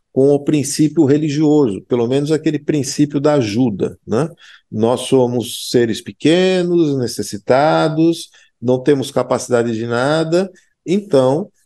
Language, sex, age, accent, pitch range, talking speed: Portuguese, male, 50-69, Brazilian, 115-150 Hz, 115 wpm